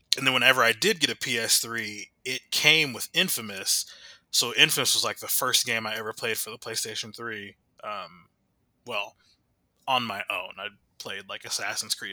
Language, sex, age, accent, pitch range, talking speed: English, male, 20-39, American, 115-150 Hz, 180 wpm